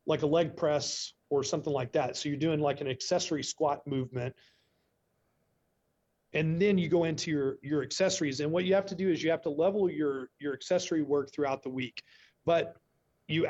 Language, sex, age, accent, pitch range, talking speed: English, male, 40-59, American, 145-170 Hz, 195 wpm